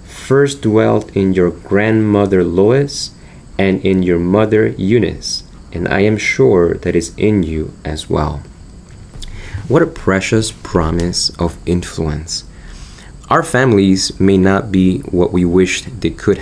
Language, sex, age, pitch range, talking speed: English, male, 30-49, 85-105 Hz, 135 wpm